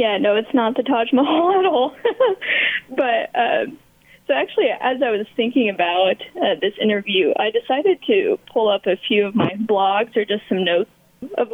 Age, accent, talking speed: 10-29, American, 185 wpm